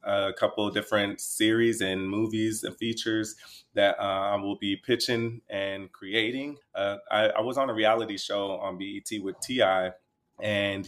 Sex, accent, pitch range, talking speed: male, American, 95-110 Hz, 160 wpm